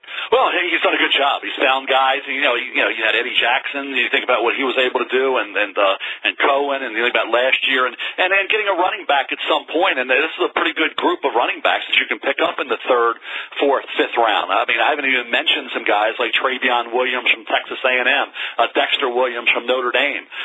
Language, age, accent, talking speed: English, 40-59, American, 270 wpm